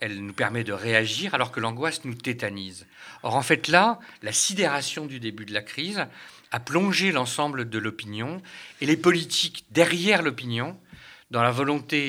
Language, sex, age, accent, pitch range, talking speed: French, male, 50-69, French, 115-175 Hz, 170 wpm